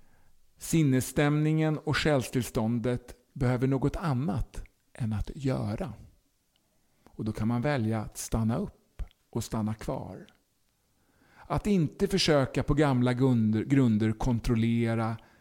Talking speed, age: 105 wpm, 50-69